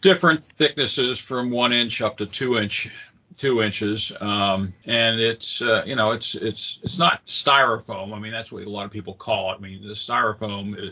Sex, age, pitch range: male, 50-69, 95-115 Hz